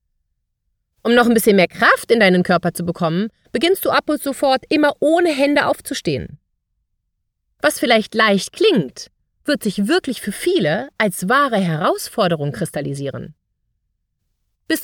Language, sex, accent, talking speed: German, female, German, 135 wpm